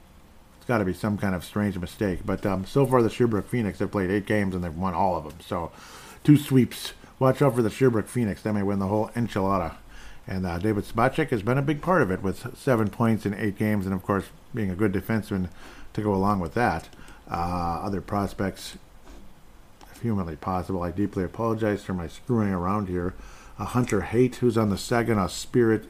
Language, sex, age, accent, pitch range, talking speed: English, male, 50-69, American, 95-115 Hz, 215 wpm